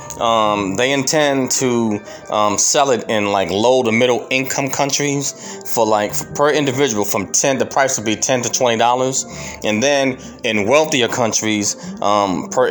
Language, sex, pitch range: English, male, 100-125 Hz